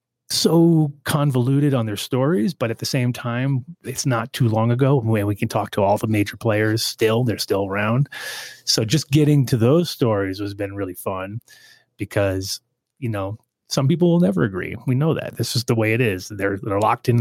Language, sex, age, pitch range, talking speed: English, male, 30-49, 110-135 Hz, 205 wpm